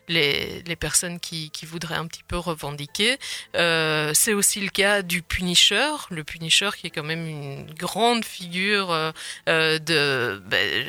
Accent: French